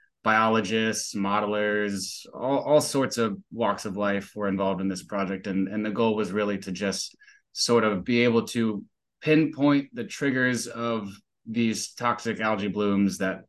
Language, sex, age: English, male, 20-39